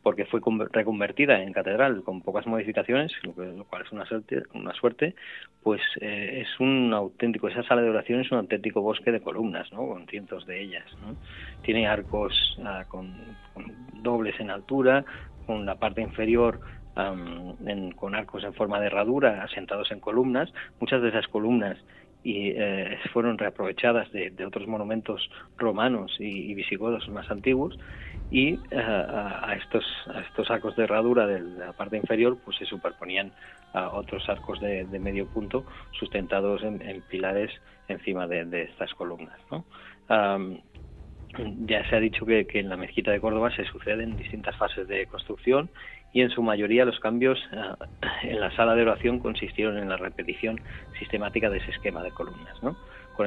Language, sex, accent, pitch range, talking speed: Spanish, male, Spanish, 100-115 Hz, 165 wpm